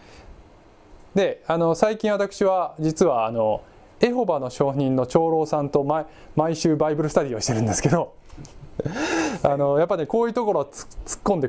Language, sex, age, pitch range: Japanese, male, 20-39, 140-230 Hz